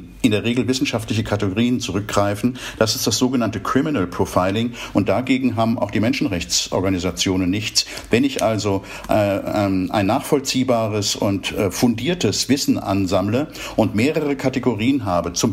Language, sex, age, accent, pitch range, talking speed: German, male, 50-69, German, 100-130 Hz, 140 wpm